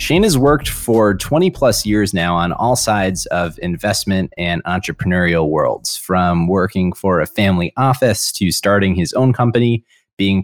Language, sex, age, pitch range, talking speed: English, male, 20-39, 95-120 Hz, 160 wpm